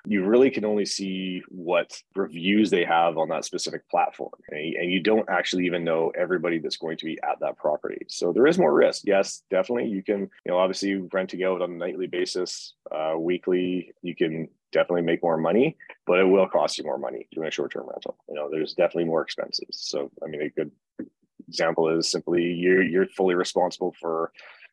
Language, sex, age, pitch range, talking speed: English, male, 30-49, 85-95 Hz, 200 wpm